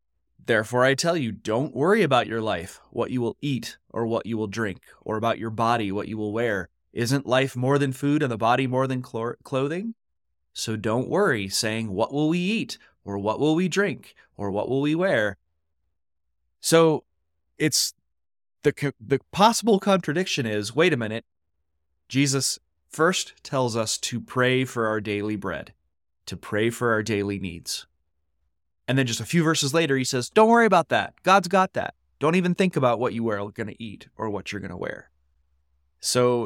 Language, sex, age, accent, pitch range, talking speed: English, male, 30-49, American, 80-135 Hz, 190 wpm